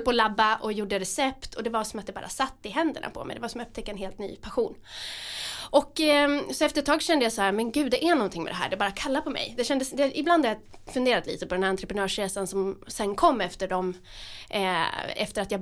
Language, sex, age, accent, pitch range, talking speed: English, female, 20-39, Swedish, 200-280 Hz, 270 wpm